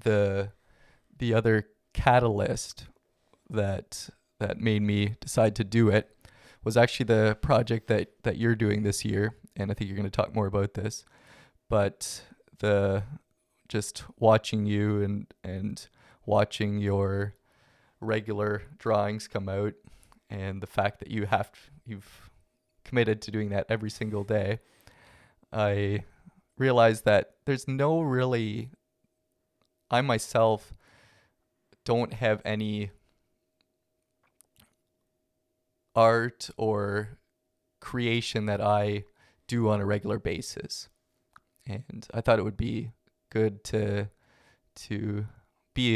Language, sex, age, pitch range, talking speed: English, male, 20-39, 105-115 Hz, 120 wpm